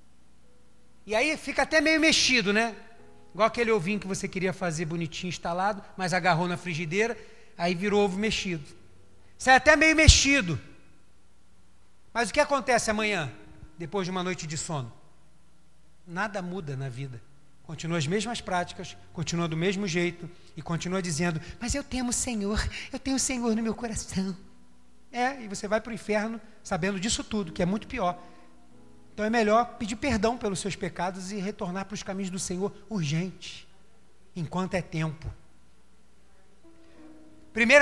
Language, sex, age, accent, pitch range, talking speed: Portuguese, male, 40-59, Brazilian, 165-240 Hz, 160 wpm